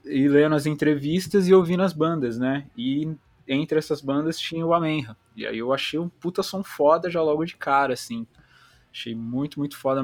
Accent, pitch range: Brazilian, 120-160 Hz